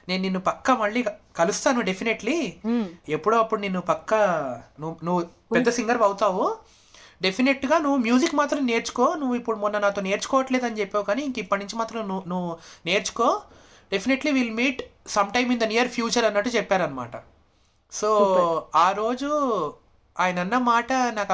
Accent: native